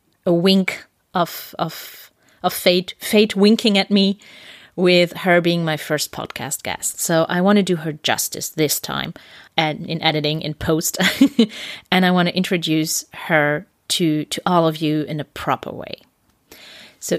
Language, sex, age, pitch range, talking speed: German, female, 30-49, 155-195 Hz, 165 wpm